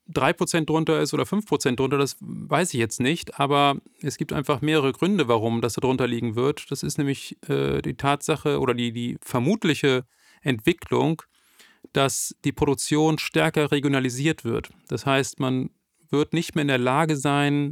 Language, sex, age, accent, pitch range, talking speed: German, male, 40-59, German, 130-155 Hz, 170 wpm